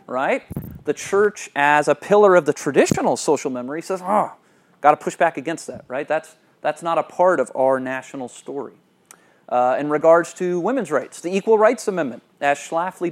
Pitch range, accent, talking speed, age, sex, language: 135-180 Hz, American, 190 wpm, 30-49, male, English